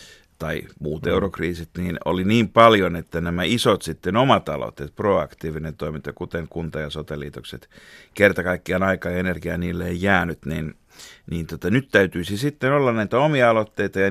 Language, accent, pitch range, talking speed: Finnish, native, 80-105 Hz, 155 wpm